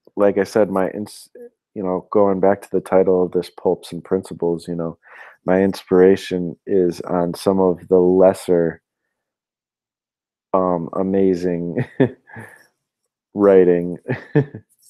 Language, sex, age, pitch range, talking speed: English, male, 30-49, 85-95 Hz, 115 wpm